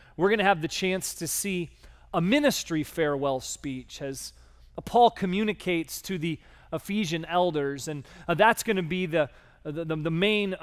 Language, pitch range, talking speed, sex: English, 145-190 Hz, 160 wpm, male